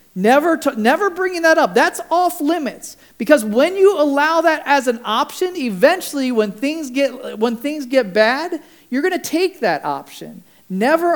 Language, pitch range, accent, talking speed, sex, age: English, 230-295 Hz, American, 165 wpm, male, 40-59